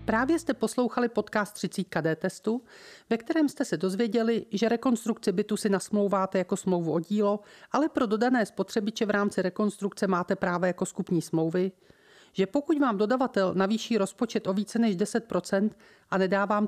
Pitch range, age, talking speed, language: 185-225 Hz, 40-59, 160 wpm, Czech